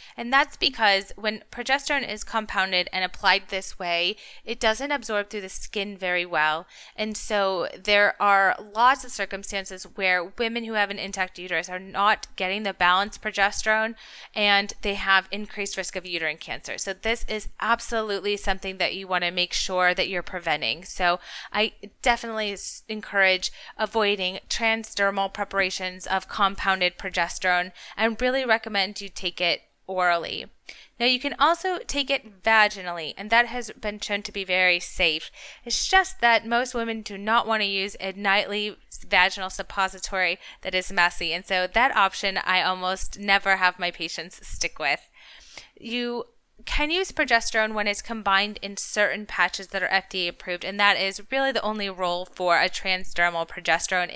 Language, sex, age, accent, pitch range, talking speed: English, female, 20-39, American, 185-220 Hz, 165 wpm